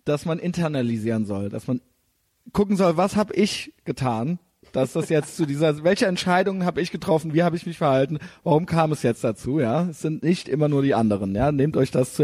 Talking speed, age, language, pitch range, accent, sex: 220 wpm, 40-59, German, 145-190 Hz, German, male